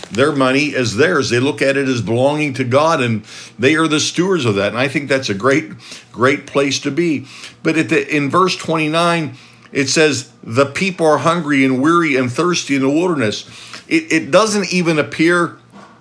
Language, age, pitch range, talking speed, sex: English, 50-69, 130-165 Hz, 190 wpm, male